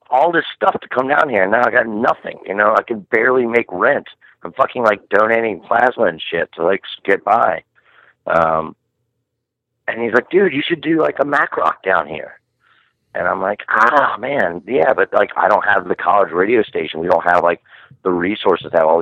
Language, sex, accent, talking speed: English, male, American, 215 wpm